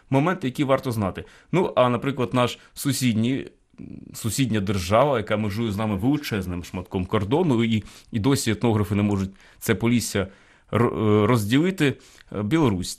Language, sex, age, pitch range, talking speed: Ukrainian, male, 30-49, 100-135 Hz, 130 wpm